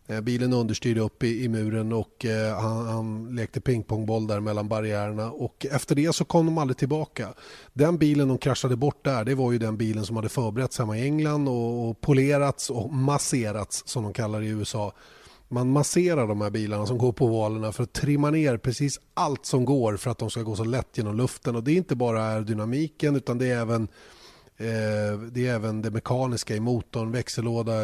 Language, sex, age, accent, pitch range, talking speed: Swedish, male, 30-49, native, 110-145 Hz, 205 wpm